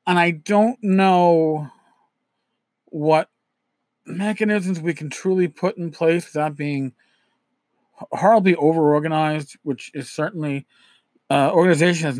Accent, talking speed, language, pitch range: American, 110 wpm, English, 145-190 Hz